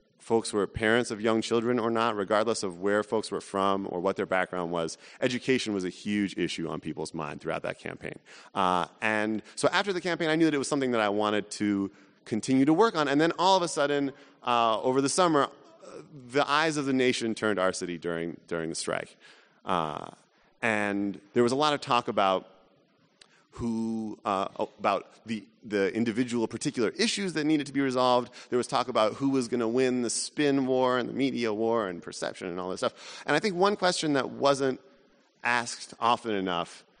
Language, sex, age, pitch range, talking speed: English, male, 30-49, 100-135 Hz, 205 wpm